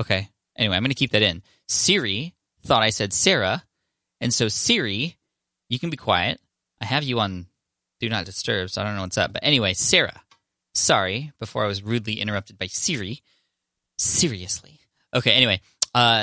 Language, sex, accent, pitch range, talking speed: English, male, American, 100-120 Hz, 175 wpm